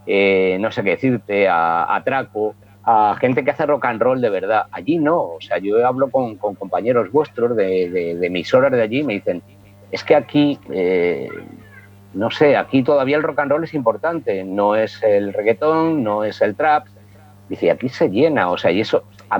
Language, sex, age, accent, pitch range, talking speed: Spanish, male, 50-69, Spanish, 100-145 Hz, 205 wpm